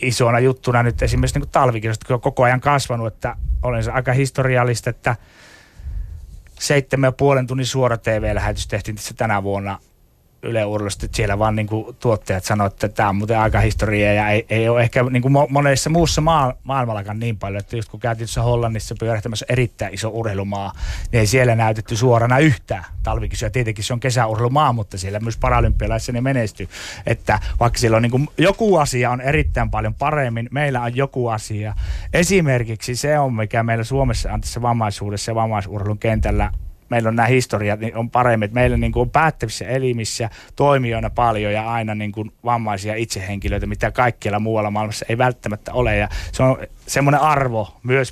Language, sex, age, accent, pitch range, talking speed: Finnish, male, 30-49, native, 105-130 Hz, 170 wpm